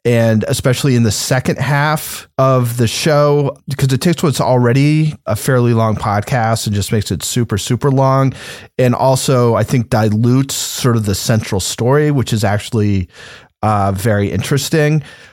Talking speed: 160 wpm